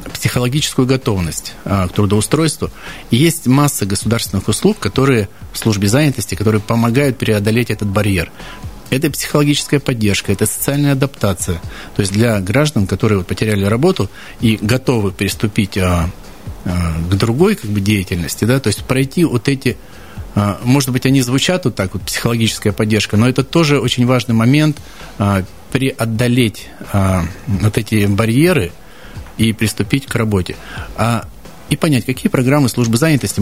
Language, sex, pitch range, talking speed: Russian, male, 100-125 Hz, 145 wpm